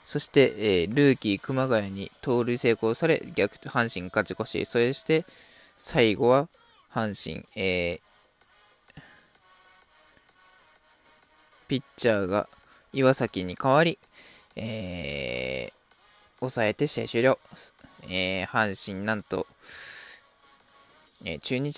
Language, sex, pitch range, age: Japanese, male, 100-145 Hz, 20-39